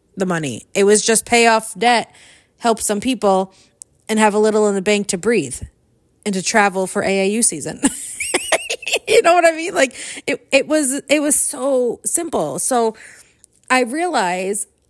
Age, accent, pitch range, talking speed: 30-49, American, 185-260 Hz, 170 wpm